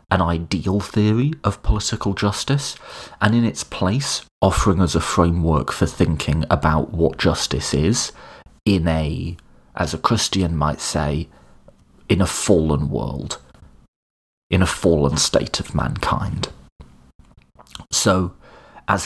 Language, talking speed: English, 125 wpm